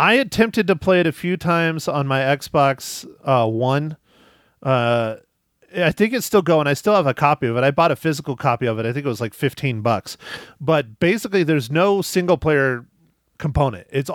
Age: 30-49